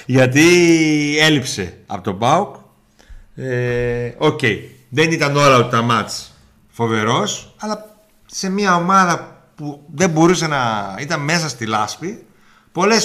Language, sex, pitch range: Greek, male, 120-185 Hz